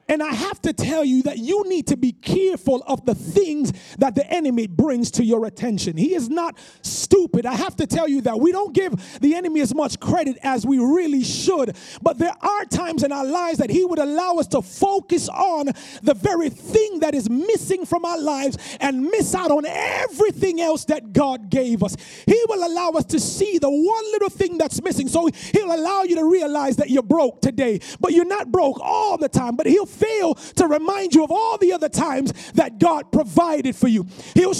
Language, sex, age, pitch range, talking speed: English, male, 30-49, 280-370 Hz, 215 wpm